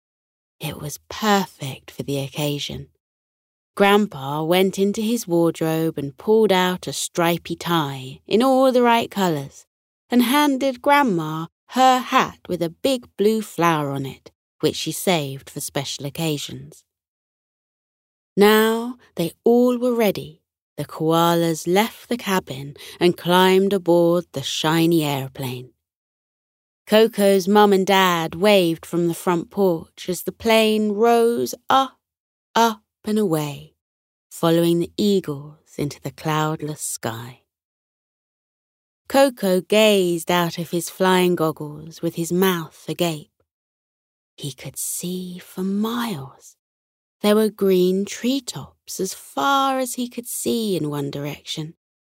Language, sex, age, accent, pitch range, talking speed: English, female, 30-49, British, 150-210 Hz, 125 wpm